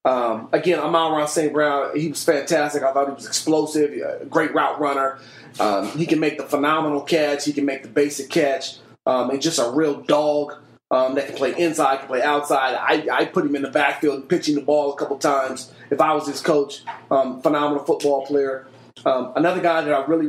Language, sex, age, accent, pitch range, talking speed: English, male, 30-49, American, 145-165 Hz, 215 wpm